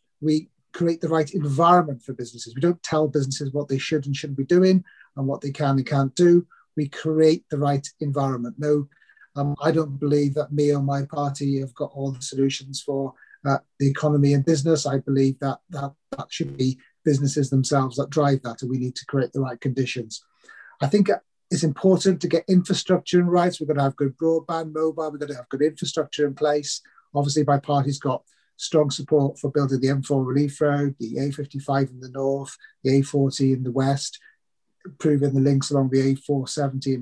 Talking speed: 200 wpm